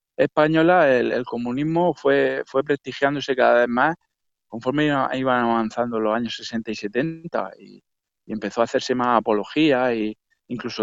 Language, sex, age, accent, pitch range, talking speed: Spanish, male, 20-39, Spanish, 115-145 Hz, 150 wpm